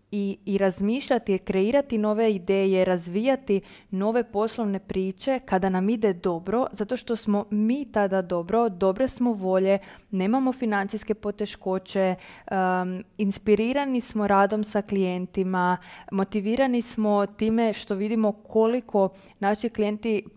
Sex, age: female, 20-39